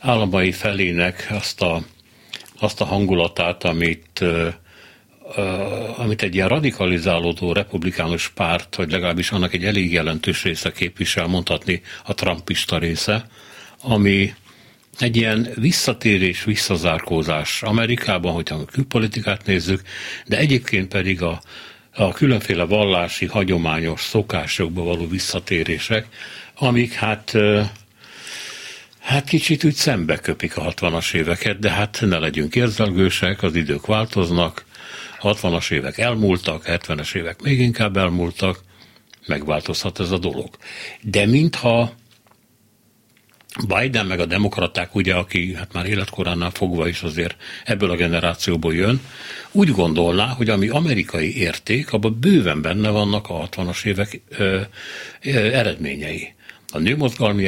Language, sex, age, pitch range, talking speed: Hungarian, male, 60-79, 85-110 Hz, 115 wpm